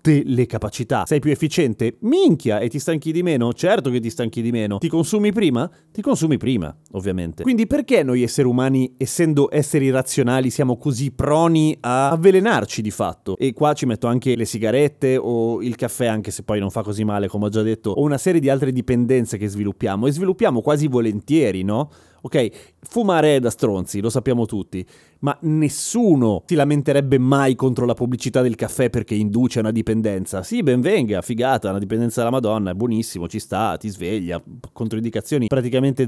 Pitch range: 115-150 Hz